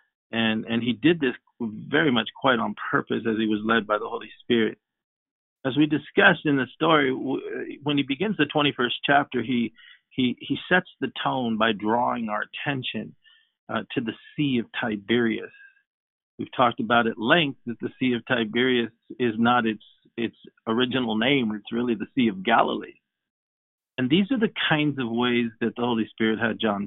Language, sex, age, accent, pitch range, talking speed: English, male, 50-69, American, 110-130 Hz, 180 wpm